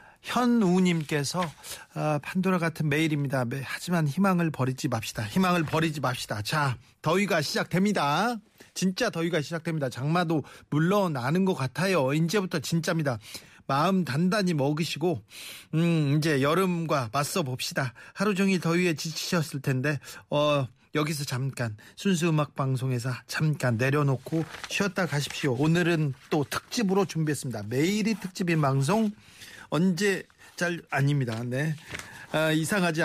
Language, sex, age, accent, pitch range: Korean, male, 40-59, native, 145-185 Hz